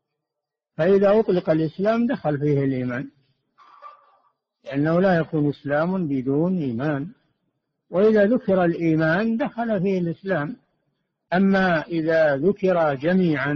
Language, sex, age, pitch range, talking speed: Arabic, male, 60-79, 145-175 Hz, 95 wpm